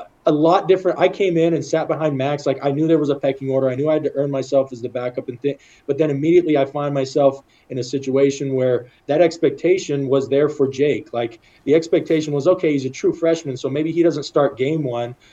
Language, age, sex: English, 20-39, male